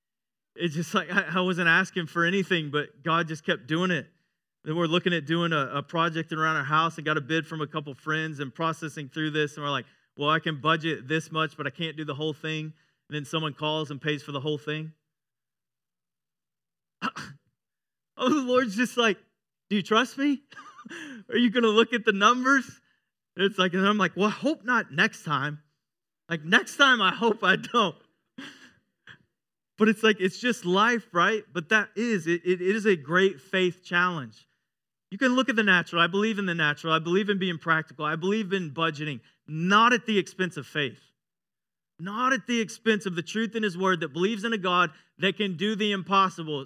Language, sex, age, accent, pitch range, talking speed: English, male, 30-49, American, 155-200 Hz, 205 wpm